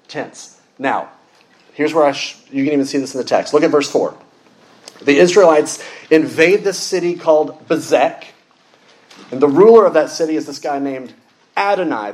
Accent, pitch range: American, 140-175 Hz